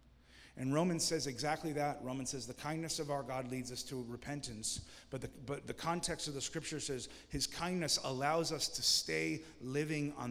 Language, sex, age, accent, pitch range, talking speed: English, male, 30-49, American, 125-165 Hz, 185 wpm